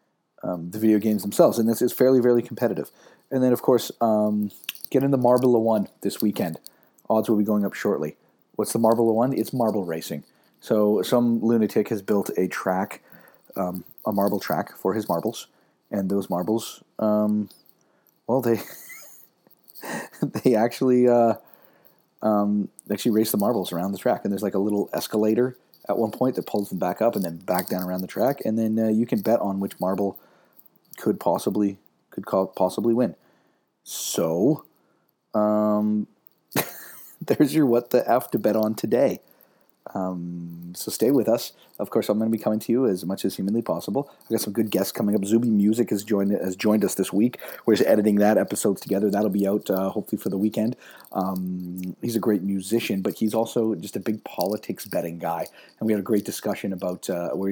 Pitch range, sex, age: 95-115 Hz, male, 30-49